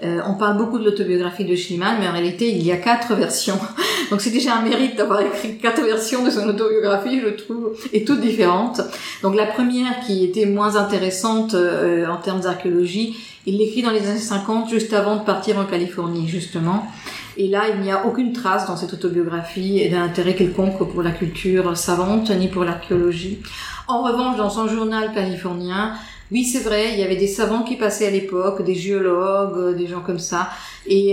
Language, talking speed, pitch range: English, 200 wpm, 180-215 Hz